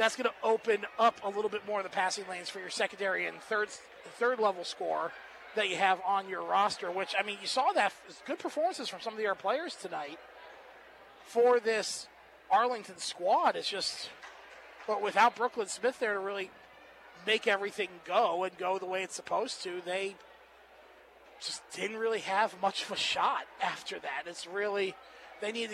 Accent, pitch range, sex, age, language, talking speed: American, 195-230 Hz, male, 30-49, English, 190 wpm